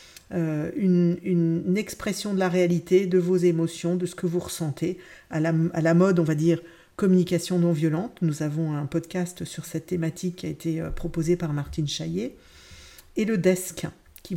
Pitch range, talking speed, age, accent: 160-180 Hz, 180 wpm, 50-69, French